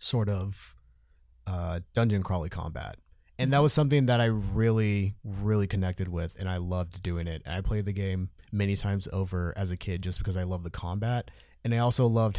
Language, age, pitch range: English, 20-39, 90-115 Hz